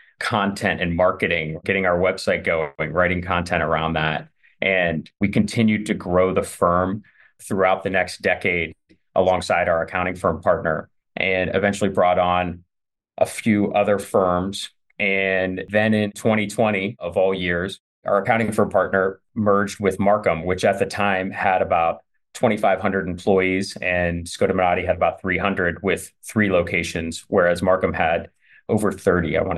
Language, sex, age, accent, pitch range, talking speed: English, male, 30-49, American, 90-100 Hz, 145 wpm